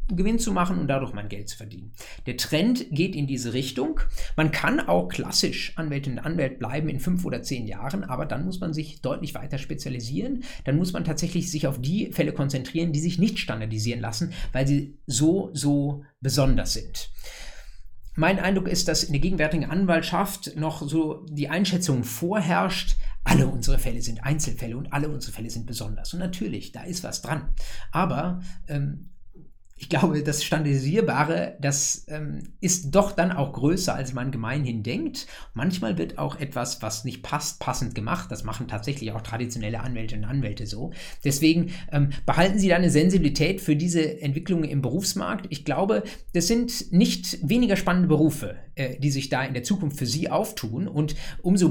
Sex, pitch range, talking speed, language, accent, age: male, 130-175 Hz, 180 wpm, German, German, 50-69